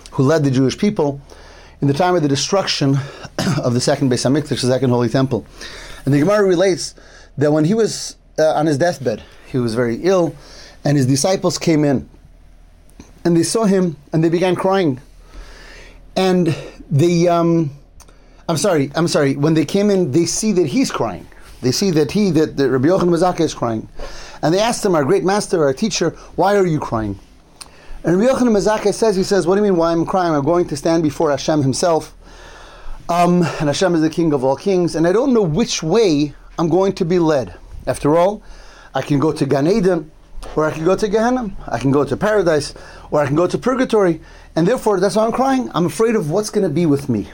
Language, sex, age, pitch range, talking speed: English, male, 30-49, 140-190 Hz, 210 wpm